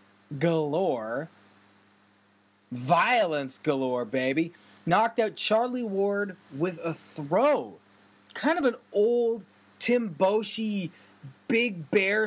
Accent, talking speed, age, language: American, 95 wpm, 20-39, English